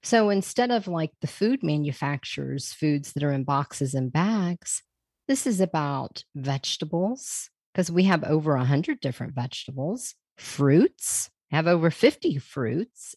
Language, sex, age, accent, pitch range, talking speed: English, female, 40-59, American, 140-185 Hz, 135 wpm